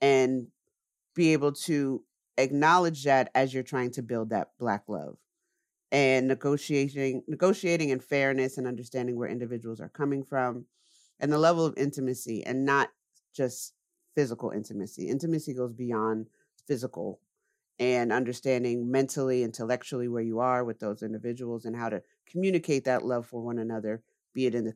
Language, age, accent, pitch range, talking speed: English, 40-59, American, 125-170 Hz, 155 wpm